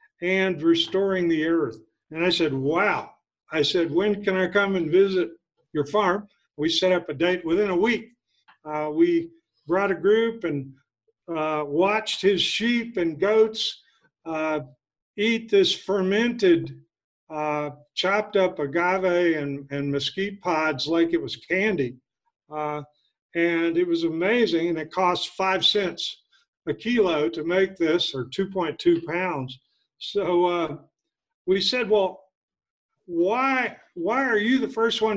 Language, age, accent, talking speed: English, 50-69, American, 145 wpm